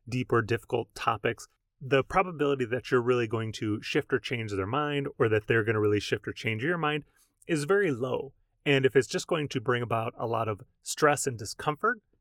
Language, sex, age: English, male, 30-49